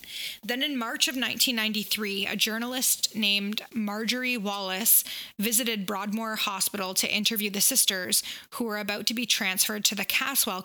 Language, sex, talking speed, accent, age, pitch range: English, female, 145 wpm, American, 20-39, 200-230 Hz